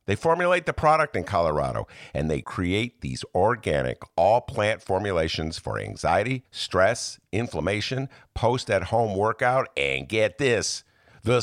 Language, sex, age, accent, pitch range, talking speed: English, male, 50-69, American, 110-170 Hz, 120 wpm